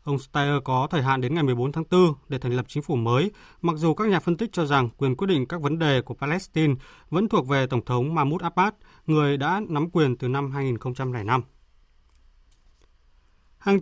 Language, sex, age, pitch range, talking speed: Vietnamese, male, 20-39, 130-170 Hz, 205 wpm